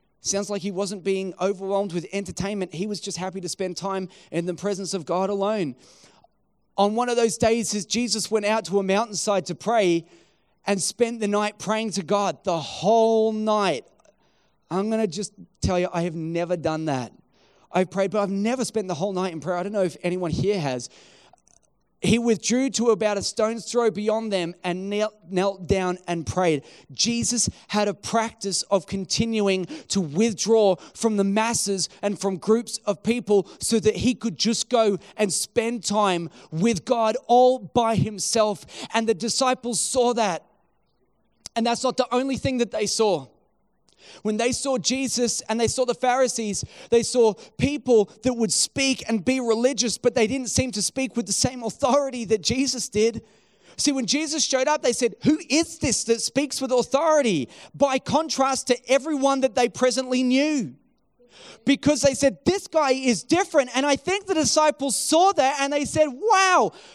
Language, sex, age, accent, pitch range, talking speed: English, male, 30-49, Australian, 195-255 Hz, 180 wpm